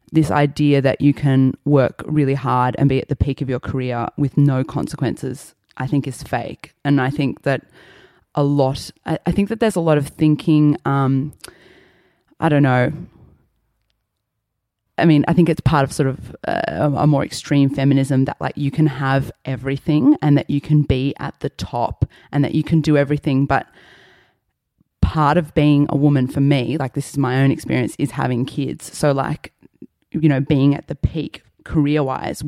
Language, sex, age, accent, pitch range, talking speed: English, female, 20-39, Australian, 135-150 Hz, 185 wpm